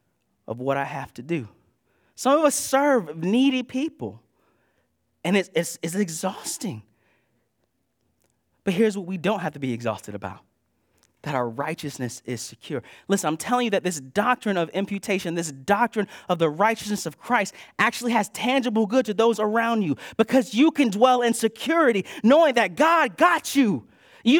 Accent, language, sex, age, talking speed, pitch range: American, English, male, 30-49, 165 wpm, 165-250 Hz